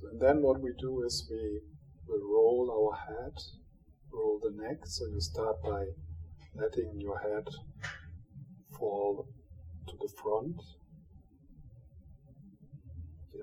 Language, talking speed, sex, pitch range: English, 115 wpm, male, 80-115 Hz